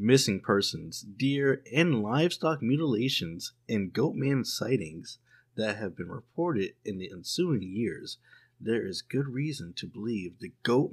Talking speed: 145 wpm